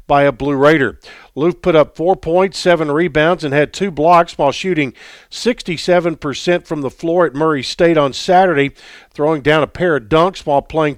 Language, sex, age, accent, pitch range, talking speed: English, male, 50-69, American, 140-165 Hz, 175 wpm